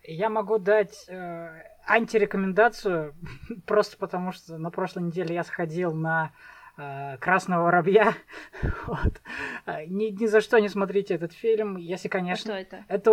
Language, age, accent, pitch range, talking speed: Russian, 20-39, native, 165-205 Hz, 120 wpm